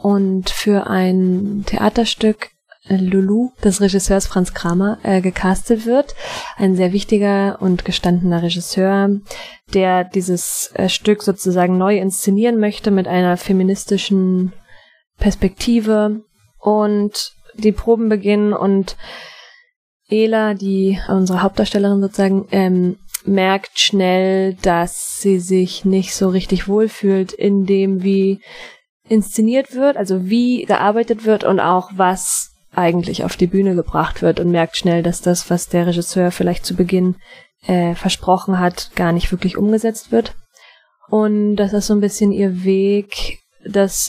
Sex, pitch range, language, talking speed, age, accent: female, 185-210 Hz, German, 130 wpm, 20-39, German